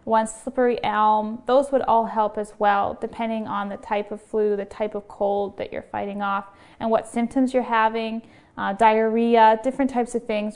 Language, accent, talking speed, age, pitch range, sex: English, American, 195 wpm, 10-29, 210-245 Hz, female